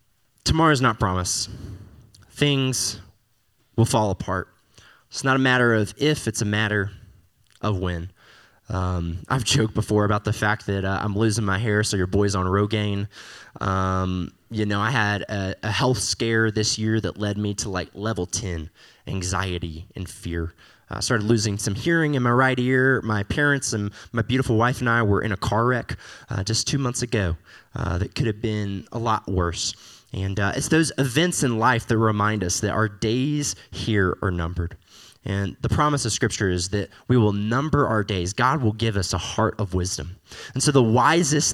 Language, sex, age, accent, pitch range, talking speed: English, male, 20-39, American, 95-120 Hz, 190 wpm